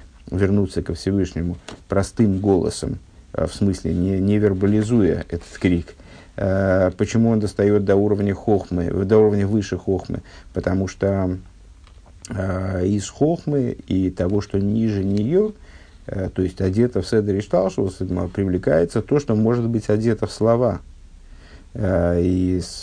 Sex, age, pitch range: male, 50-69, 90-110 Hz